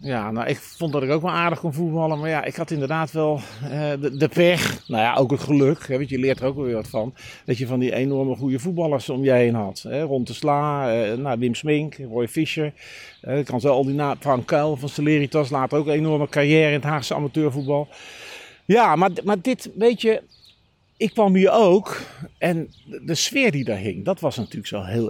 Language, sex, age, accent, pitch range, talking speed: Dutch, male, 50-69, Dutch, 130-175 Hz, 230 wpm